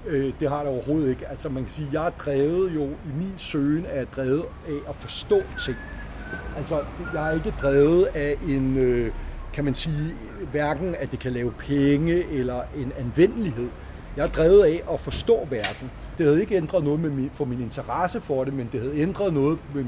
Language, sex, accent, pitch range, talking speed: Danish, male, native, 130-165 Hz, 195 wpm